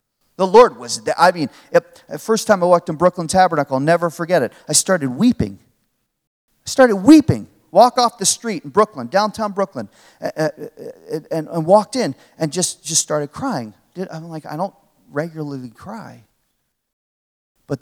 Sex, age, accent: male, 40-59, American